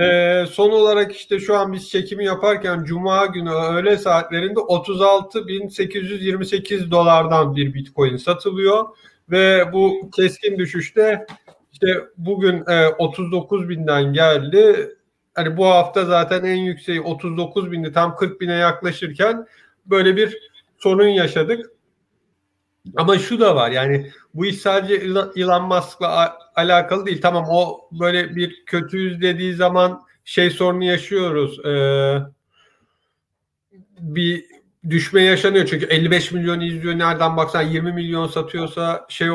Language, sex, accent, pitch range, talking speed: Turkish, male, native, 165-195 Hz, 115 wpm